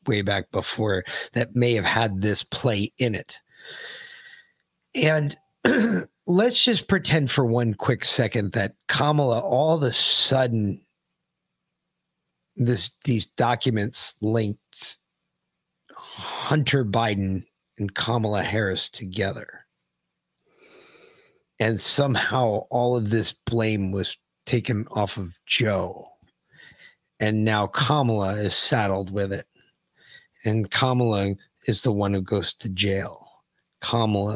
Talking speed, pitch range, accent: 110 wpm, 100-130 Hz, American